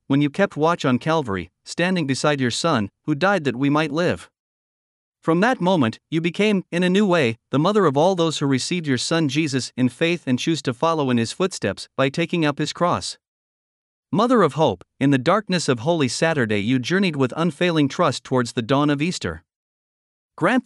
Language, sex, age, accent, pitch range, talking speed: English, male, 50-69, American, 135-170 Hz, 200 wpm